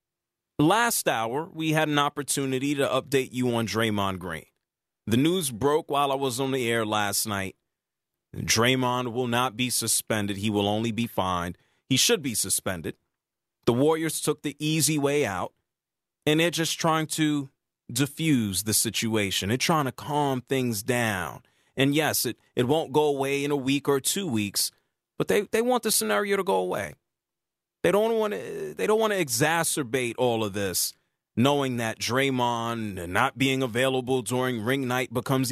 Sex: male